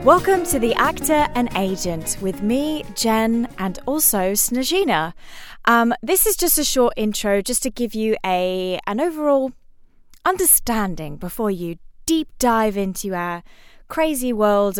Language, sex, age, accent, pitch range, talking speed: English, female, 20-39, British, 195-265 Hz, 140 wpm